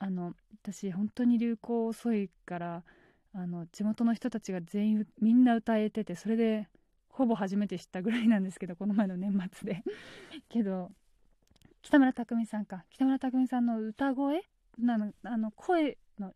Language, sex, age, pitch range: Japanese, female, 20-39, 185-235 Hz